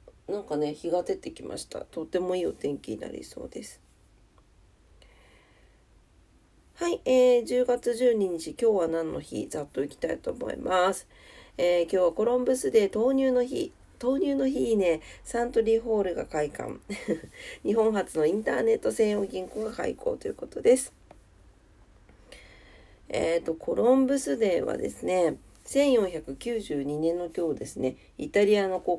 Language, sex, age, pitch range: Japanese, female, 40-59, 165-240 Hz